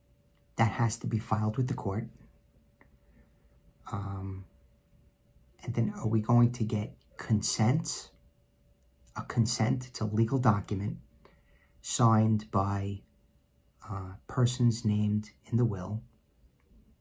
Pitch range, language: 100-115 Hz, English